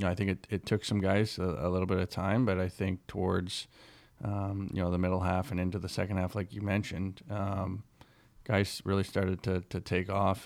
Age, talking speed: 20-39, 225 wpm